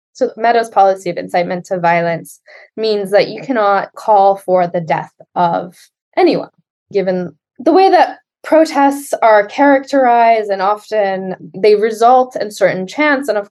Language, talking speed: English, 145 wpm